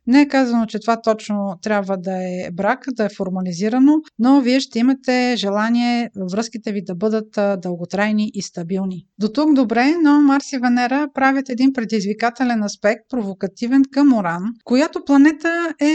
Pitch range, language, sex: 215-265 Hz, Bulgarian, female